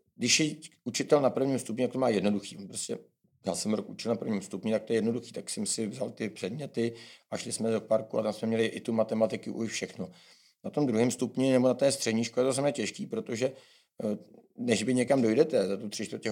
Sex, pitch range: male, 110-130 Hz